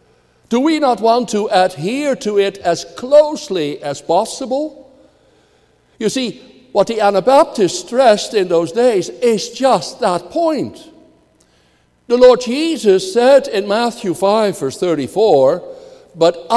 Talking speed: 125 wpm